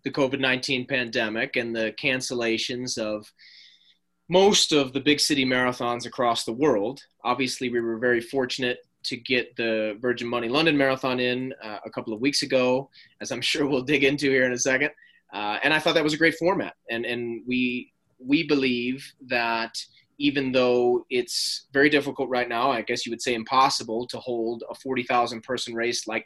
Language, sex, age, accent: English, male, 30-49, American